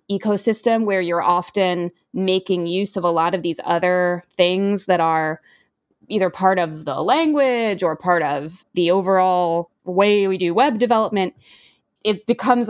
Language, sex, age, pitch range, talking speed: English, female, 20-39, 175-215 Hz, 150 wpm